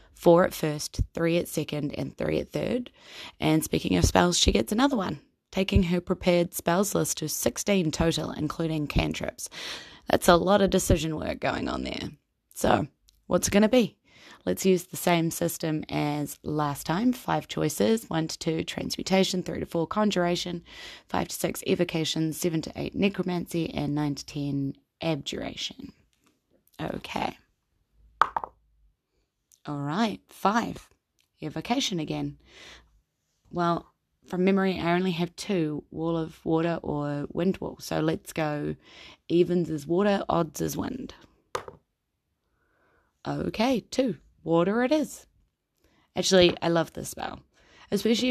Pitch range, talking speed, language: 155-190 Hz, 145 wpm, English